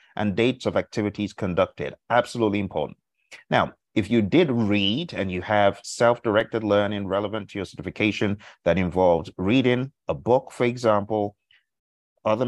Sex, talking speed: male, 140 wpm